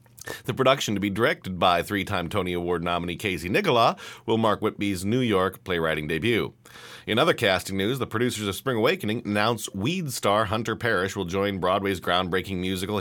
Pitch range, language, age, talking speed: 90-120 Hz, English, 40-59, 180 wpm